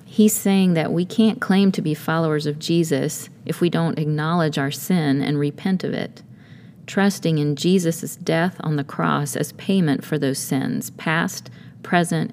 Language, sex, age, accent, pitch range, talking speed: English, female, 40-59, American, 150-175 Hz, 170 wpm